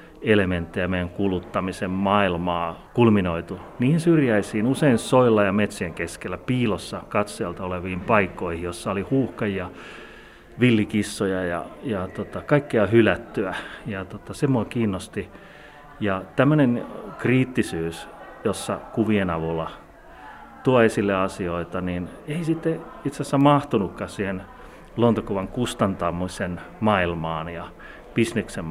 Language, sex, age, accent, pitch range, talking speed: Finnish, male, 30-49, native, 90-120 Hz, 105 wpm